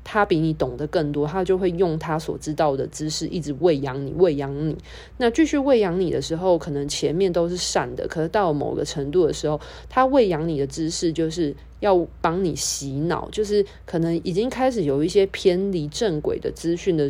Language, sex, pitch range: Chinese, female, 150-195 Hz